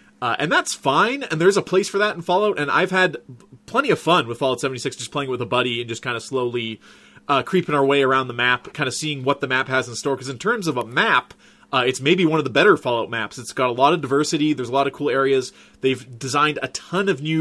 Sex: male